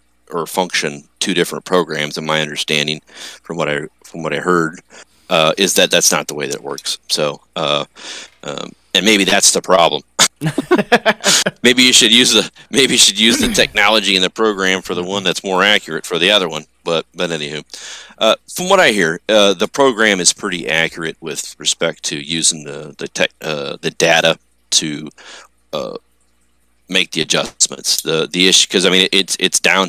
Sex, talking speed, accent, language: male, 195 wpm, American, English